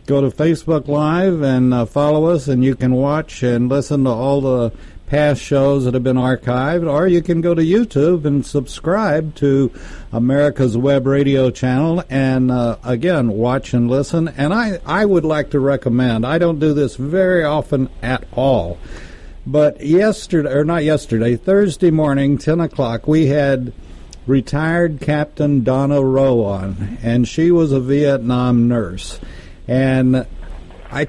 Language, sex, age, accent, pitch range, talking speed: English, male, 60-79, American, 120-150 Hz, 155 wpm